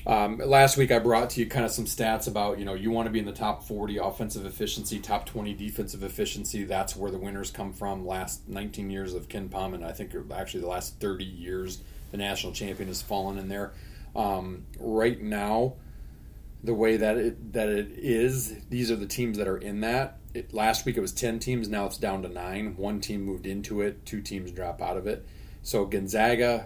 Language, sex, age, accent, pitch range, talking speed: English, male, 30-49, American, 95-110 Hz, 220 wpm